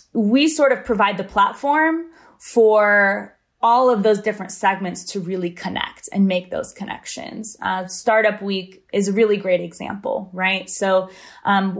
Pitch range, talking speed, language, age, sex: 190-230 Hz, 155 wpm, English, 20-39, female